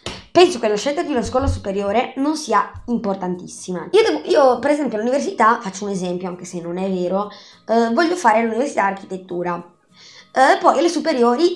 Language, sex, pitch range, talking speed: Italian, female, 190-255 Hz, 175 wpm